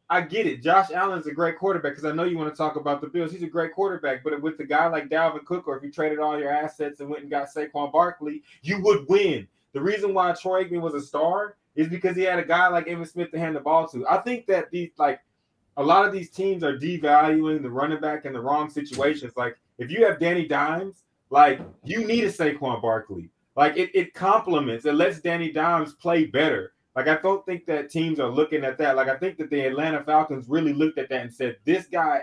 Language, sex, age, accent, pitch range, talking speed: English, male, 20-39, American, 140-175 Hz, 250 wpm